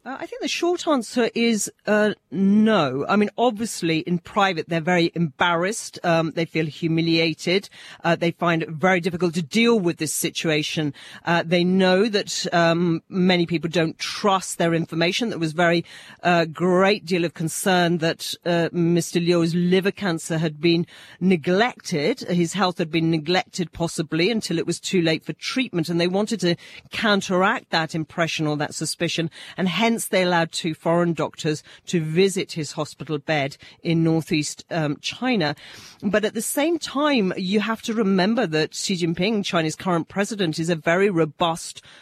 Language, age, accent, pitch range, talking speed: English, 40-59, British, 160-190 Hz, 170 wpm